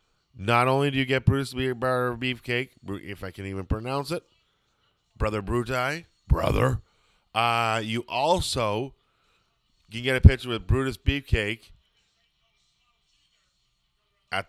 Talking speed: 110 wpm